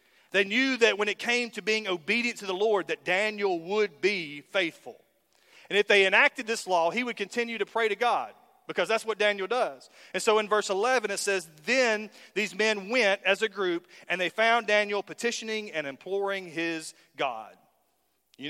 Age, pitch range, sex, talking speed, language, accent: 40-59, 165-225 Hz, male, 190 wpm, English, American